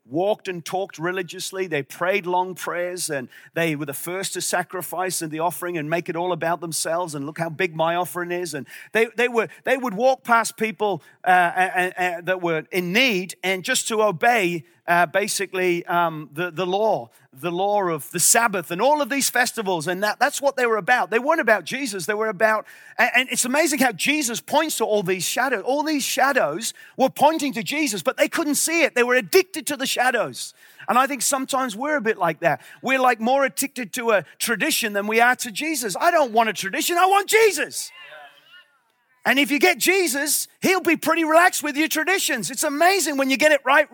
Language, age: English, 40-59